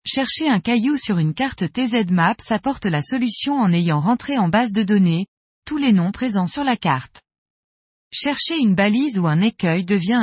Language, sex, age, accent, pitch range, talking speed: French, female, 20-39, French, 185-250 Hz, 180 wpm